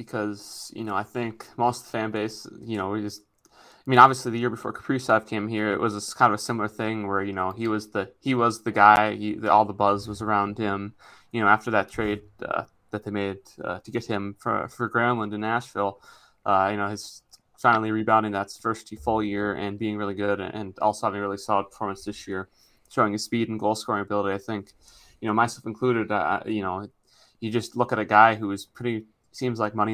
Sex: male